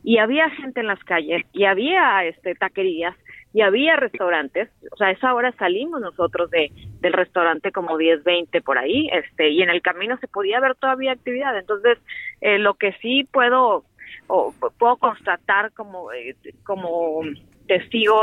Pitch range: 180-230 Hz